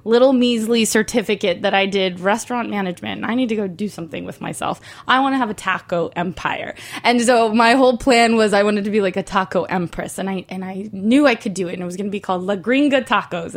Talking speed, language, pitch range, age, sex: 250 wpm, English, 195-245 Hz, 20-39, female